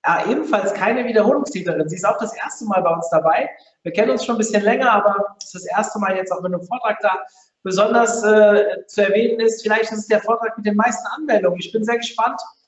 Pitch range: 205-235 Hz